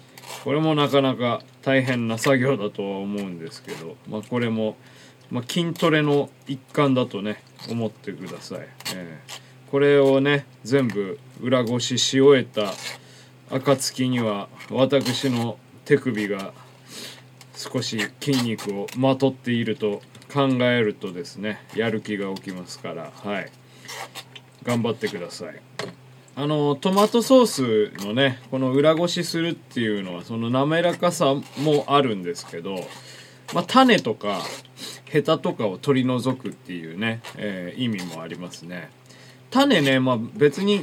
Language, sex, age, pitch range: Japanese, male, 20-39, 110-145 Hz